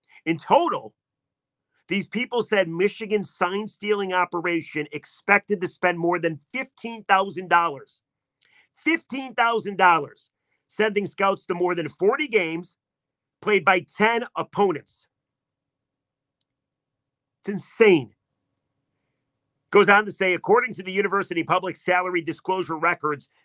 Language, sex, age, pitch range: English, male, 40-59, 145-200 Hz